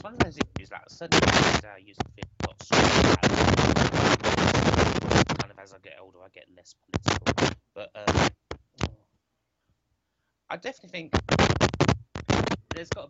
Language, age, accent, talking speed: English, 30-49, British, 130 wpm